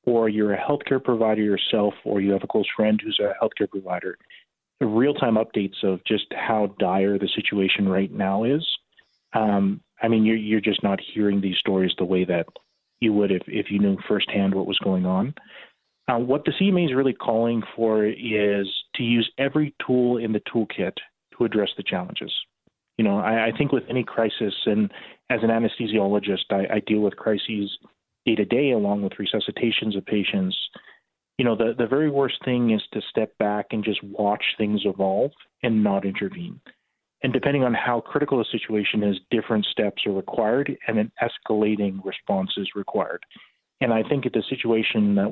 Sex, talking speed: male, 185 wpm